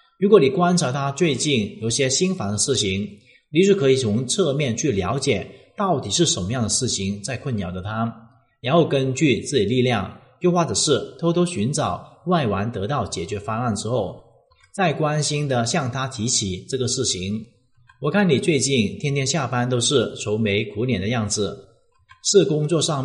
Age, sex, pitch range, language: 30-49, male, 105-140 Hz, Chinese